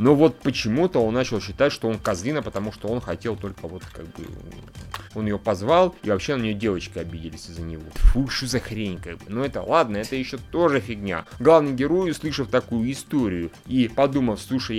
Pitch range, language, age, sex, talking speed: 105-140 Hz, Russian, 30-49, male, 200 wpm